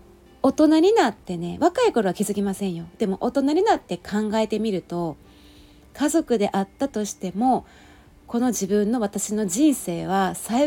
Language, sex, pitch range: Japanese, female, 185-295 Hz